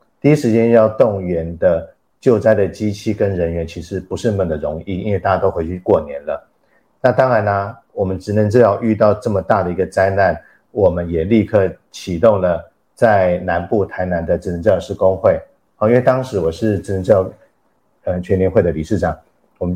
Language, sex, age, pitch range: Chinese, male, 50-69, 85-105 Hz